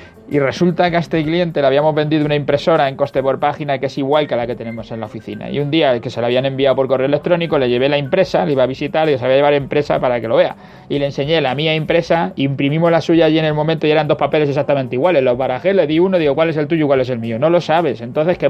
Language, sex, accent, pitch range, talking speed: Spanish, male, Spanish, 135-170 Hz, 305 wpm